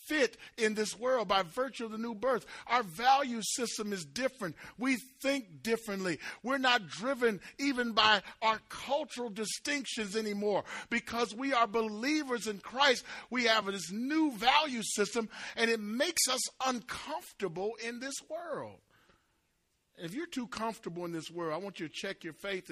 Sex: male